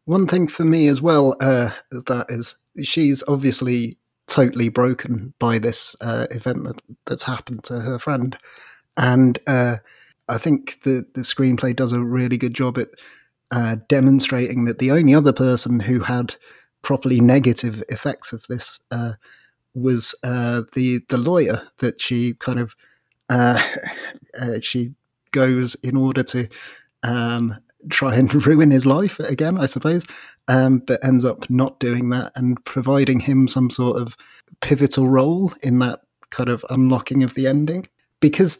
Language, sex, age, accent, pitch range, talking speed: English, male, 30-49, British, 120-135 Hz, 155 wpm